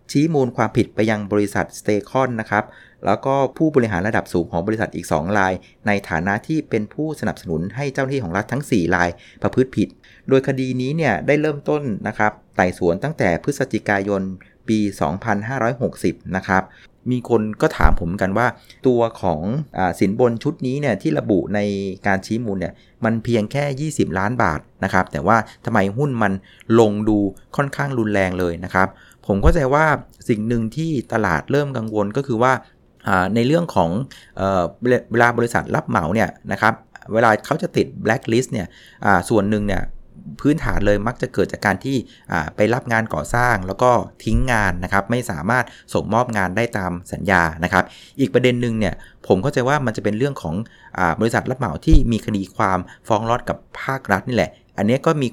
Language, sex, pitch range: Thai, male, 95-125 Hz